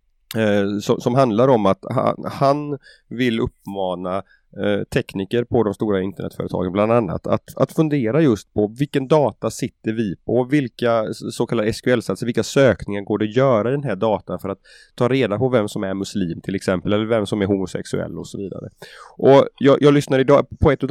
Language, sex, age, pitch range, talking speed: Swedish, male, 30-49, 100-125 Hz, 185 wpm